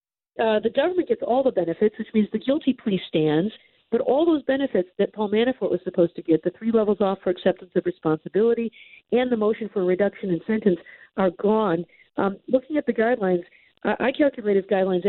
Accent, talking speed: American, 205 wpm